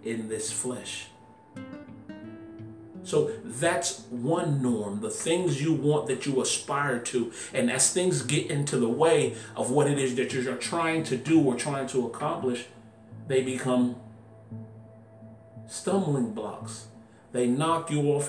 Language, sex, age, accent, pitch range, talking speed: English, male, 40-59, American, 110-145 Hz, 140 wpm